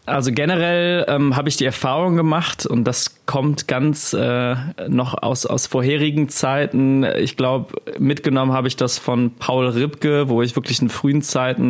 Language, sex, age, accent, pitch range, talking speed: German, male, 20-39, German, 120-140 Hz, 170 wpm